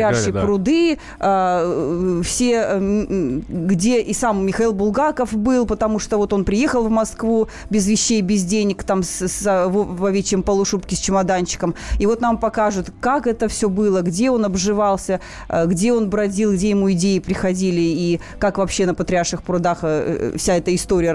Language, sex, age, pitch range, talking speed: Russian, female, 30-49, 185-235 Hz, 150 wpm